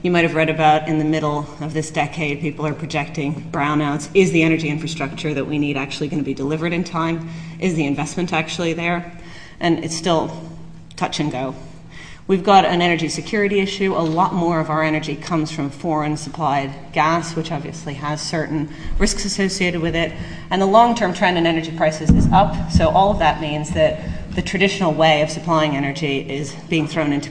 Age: 30-49